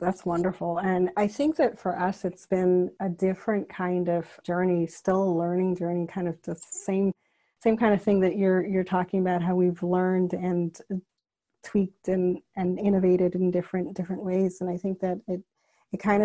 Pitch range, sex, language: 180-190 Hz, female, English